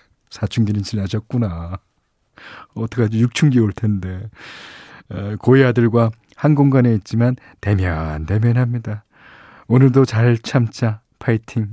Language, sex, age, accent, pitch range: Korean, male, 40-59, native, 100-145 Hz